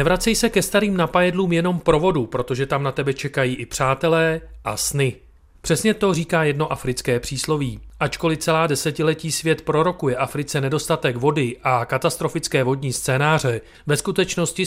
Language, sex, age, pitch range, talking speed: Czech, male, 40-59, 130-165 Hz, 145 wpm